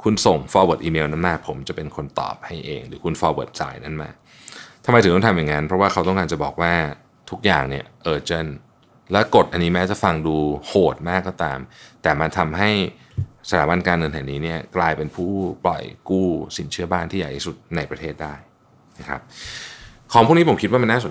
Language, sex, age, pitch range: Thai, male, 20-39, 80-95 Hz